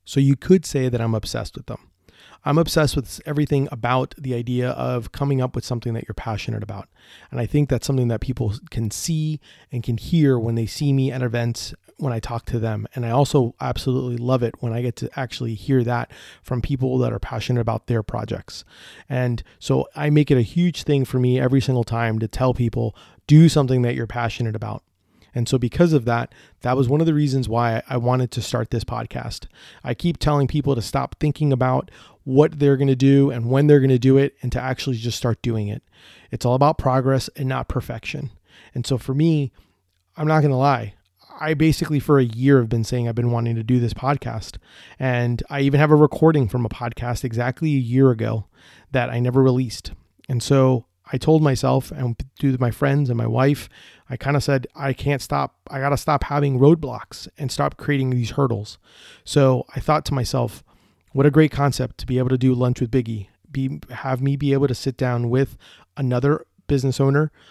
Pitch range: 120-140 Hz